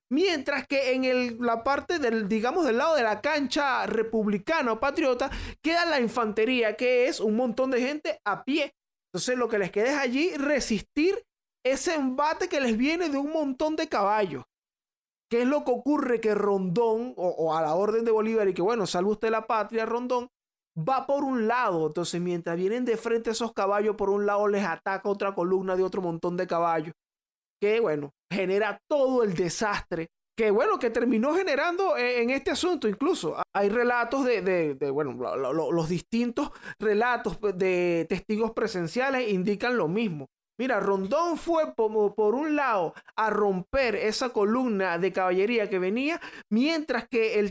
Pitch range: 200-260 Hz